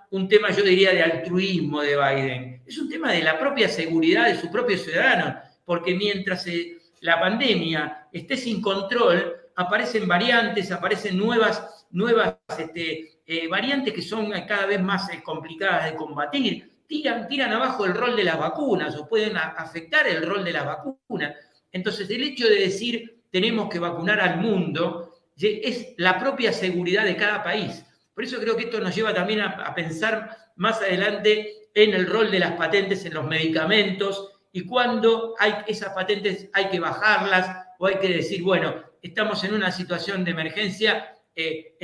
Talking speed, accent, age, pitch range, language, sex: 165 wpm, Argentinian, 50-69, 170-215 Hz, Spanish, male